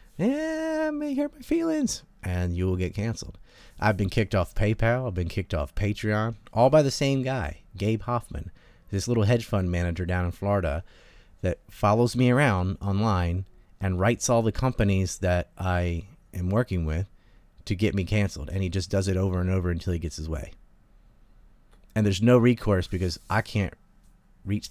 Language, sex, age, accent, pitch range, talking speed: English, male, 30-49, American, 85-110 Hz, 180 wpm